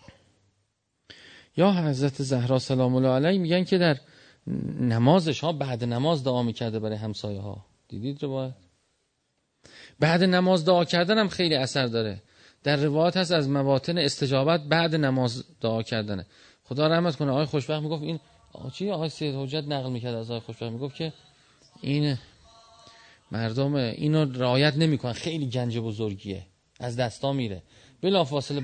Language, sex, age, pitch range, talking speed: Persian, male, 30-49, 110-155 Hz, 145 wpm